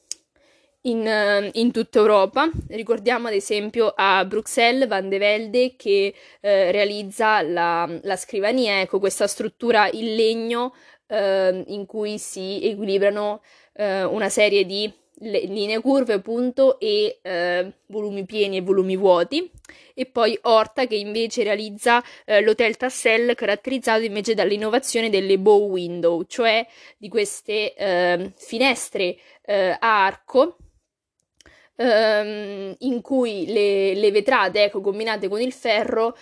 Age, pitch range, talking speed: 20-39, 195-235 Hz, 125 wpm